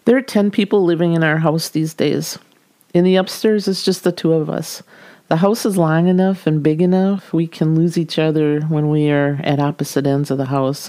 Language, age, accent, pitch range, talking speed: English, 50-69, American, 150-175 Hz, 225 wpm